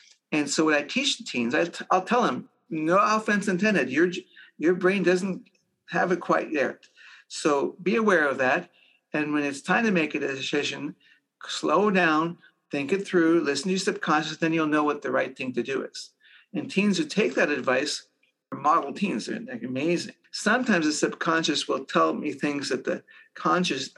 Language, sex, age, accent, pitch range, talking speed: English, male, 50-69, American, 150-185 Hz, 195 wpm